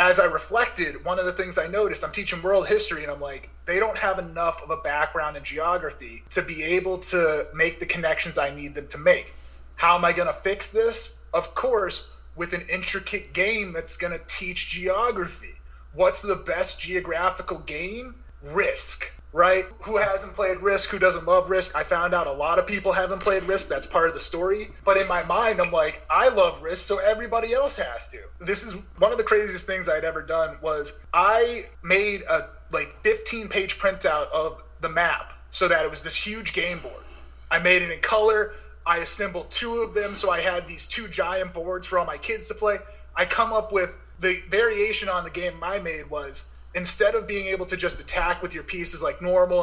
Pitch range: 170-200 Hz